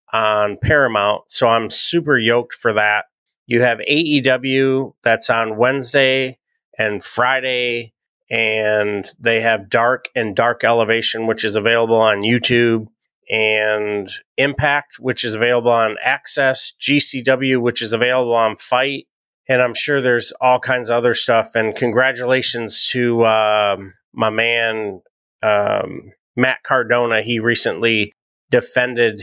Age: 30-49